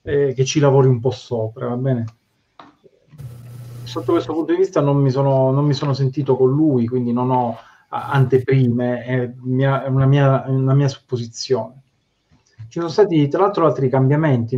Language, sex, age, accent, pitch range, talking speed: Italian, male, 30-49, native, 125-145 Hz, 175 wpm